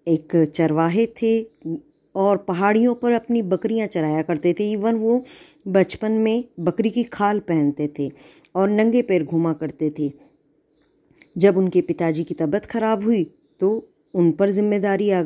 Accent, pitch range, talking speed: native, 170-230 Hz, 150 wpm